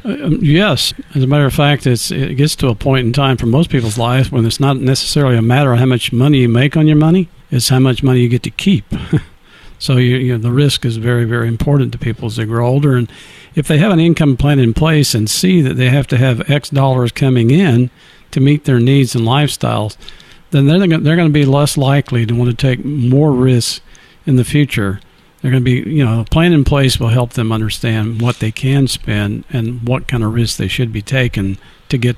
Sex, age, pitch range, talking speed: male, 50-69, 115-140 Hz, 240 wpm